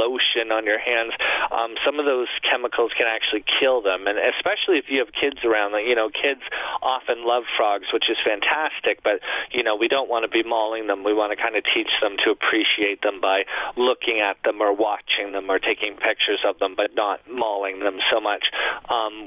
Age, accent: 40-59, American